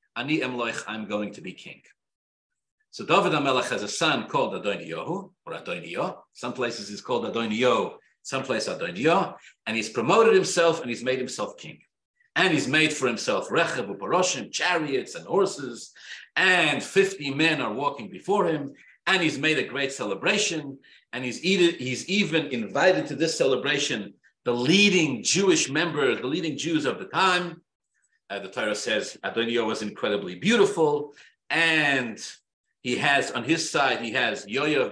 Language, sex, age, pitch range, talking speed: English, male, 50-69, 130-205 Hz, 155 wpm